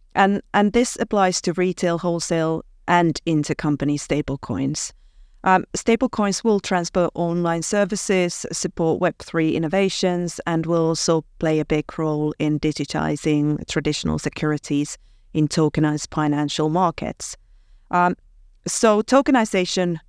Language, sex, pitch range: English, female, 155-190 Hz